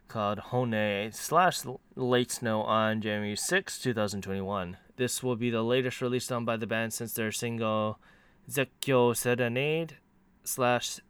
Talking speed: 135 wpm